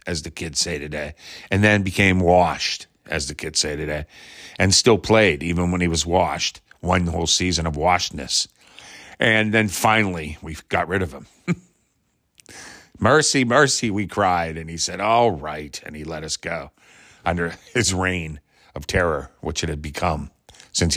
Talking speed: 170 wpm